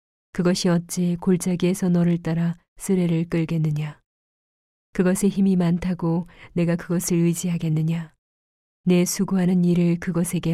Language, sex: Korean, female